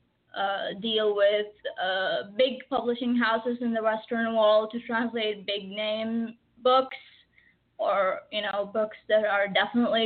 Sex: female